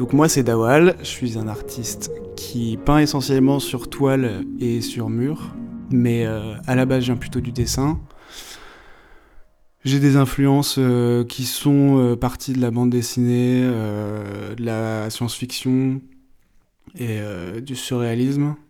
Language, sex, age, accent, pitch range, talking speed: French, male, 20-39, French, 115-130 Hz, 150 wpm